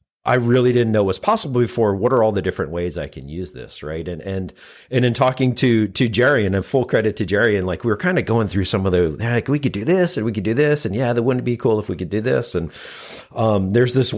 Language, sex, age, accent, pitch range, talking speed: English, male, 40-59, American, 95-125 Hz, 290 wpm